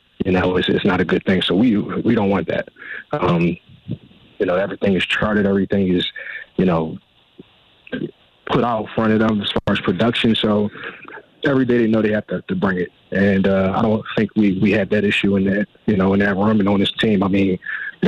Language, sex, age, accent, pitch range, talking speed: English, male, 30-49, American, 90-105 Hz, 225 wpm